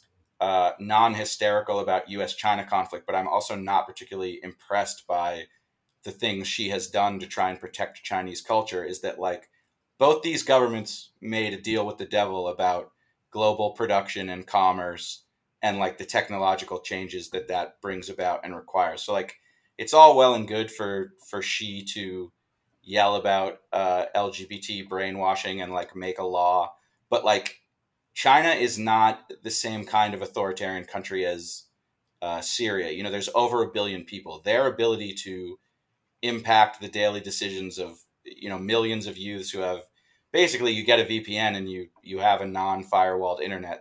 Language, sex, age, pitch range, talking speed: English, male, 30-49, 95-110 Hz, 165 wpm